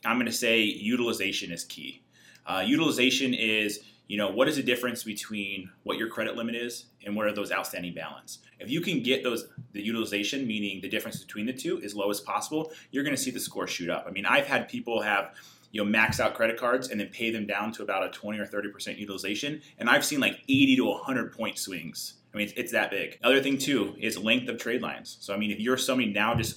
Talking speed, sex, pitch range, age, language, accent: 240 wpm, male, 105-130 Hz, 30-49, English, American